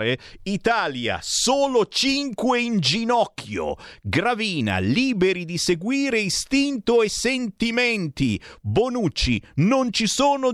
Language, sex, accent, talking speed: Italian, male, native, 90 wpm